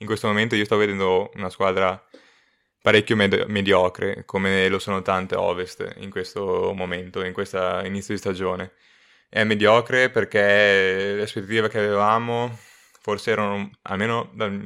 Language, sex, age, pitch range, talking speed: Italian, male, 20-39, 95-110 Hz, 140 wpm